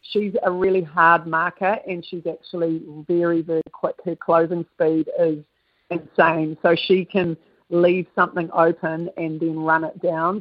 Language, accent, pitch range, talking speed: English, Australian, 160-180 Hz, 155 wpm